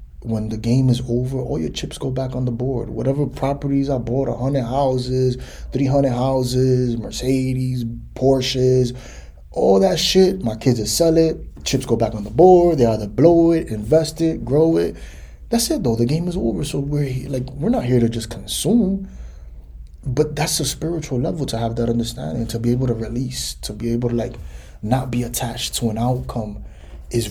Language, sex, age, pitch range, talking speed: English, male, 20-39, 110-135 Hz, 195 wpm